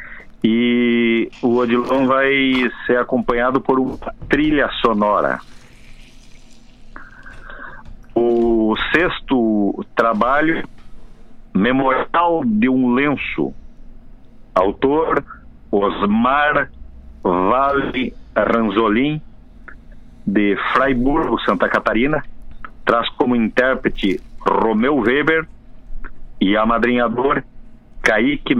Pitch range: 105-130 Hz